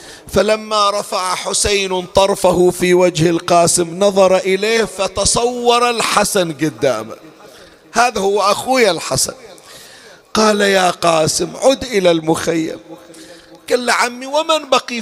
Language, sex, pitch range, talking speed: Arabic, male, 180-235 Hz, 105 wpm